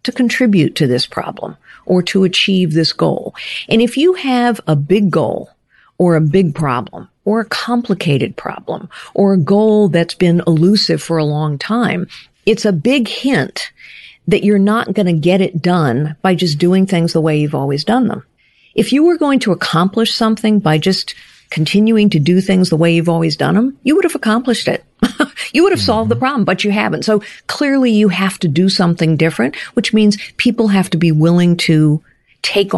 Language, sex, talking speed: English, female, 195 wpm